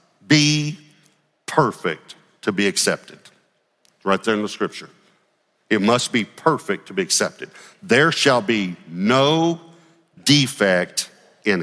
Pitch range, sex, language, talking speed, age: 105-140 Hz, male, English, 125 wpm, 50-69